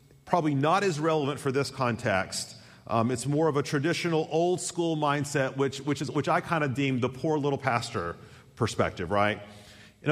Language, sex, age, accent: English, male, 40-59, American